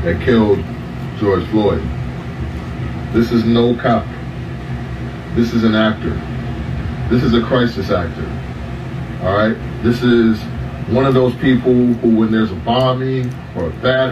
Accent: American